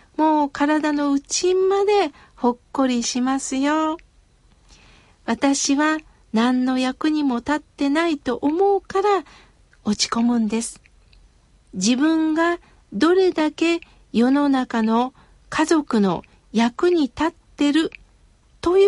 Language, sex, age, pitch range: Japanese, female, 50-69, 245-325 Hz